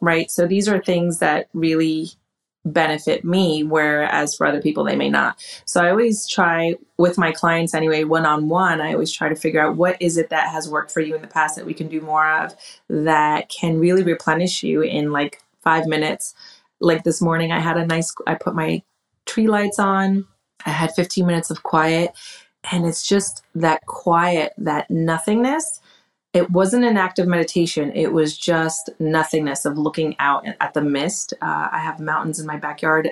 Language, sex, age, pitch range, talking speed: English, female, 30-49, 155-175 Hz, 190 wpm